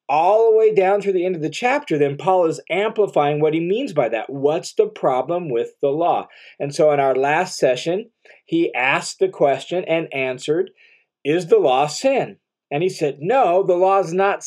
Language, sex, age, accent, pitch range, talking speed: English, male, 40-59, American, 150-245 Hz, 205 wpm